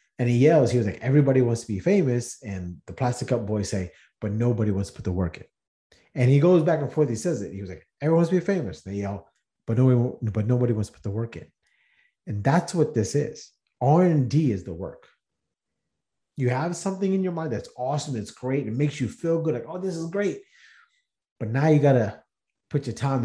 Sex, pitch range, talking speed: male, 105-145 Hz, 230 wpm